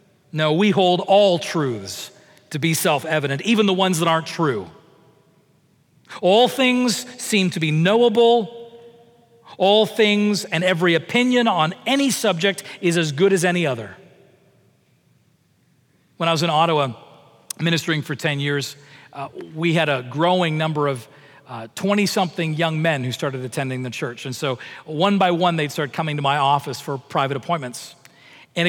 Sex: male